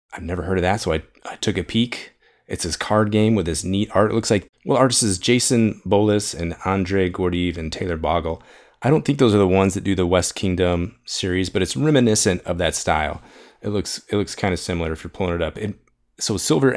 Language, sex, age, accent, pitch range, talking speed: English, male, 30-49, American, 90-110 Hz, 240 wpm